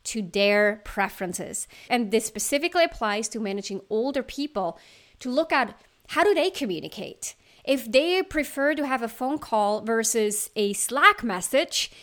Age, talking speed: 30-49, 150 wpm